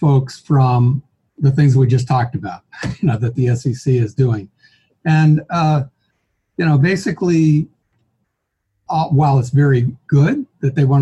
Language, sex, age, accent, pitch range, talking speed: English, male, 60-79, American, 130-160 Hz, 150 wpm